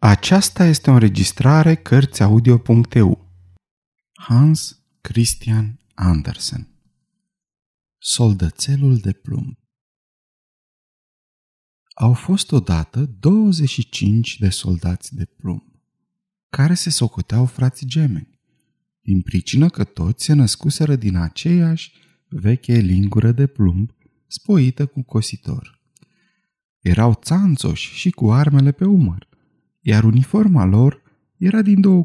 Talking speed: 95 wpm